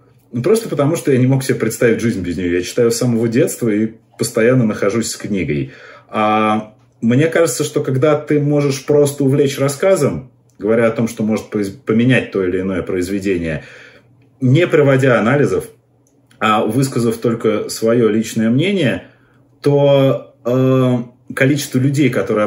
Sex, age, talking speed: male, 30-49, 145 wpm